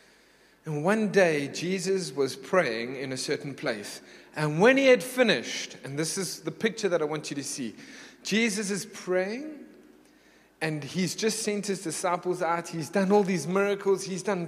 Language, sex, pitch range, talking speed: English, male, 180-250 Hz, 180 wpm